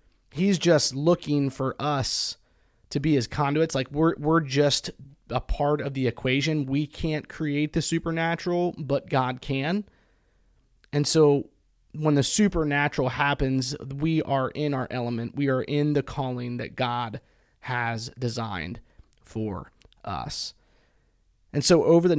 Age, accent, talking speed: 30-49, American, 140 wpm